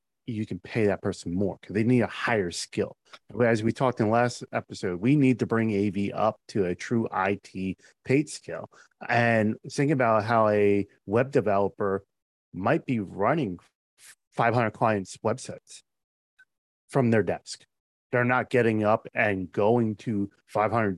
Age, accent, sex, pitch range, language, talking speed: 30-49, American, male, 100-125 Hz, English, 155 wpm